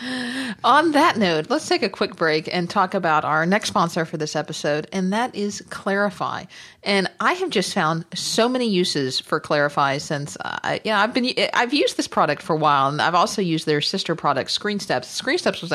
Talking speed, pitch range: 200 wpm, 160-210 Hz